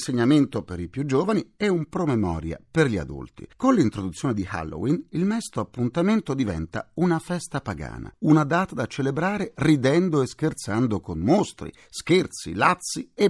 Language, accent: Italian, native